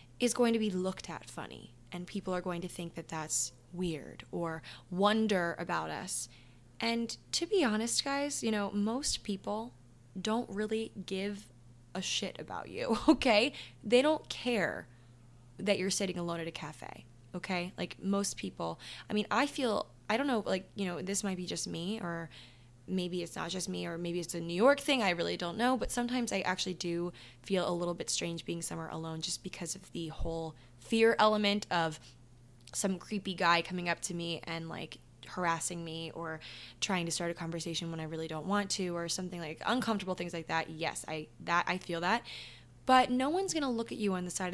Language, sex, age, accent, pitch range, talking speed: English, female, 10-29, American, 165-210 Hz, 205 wpm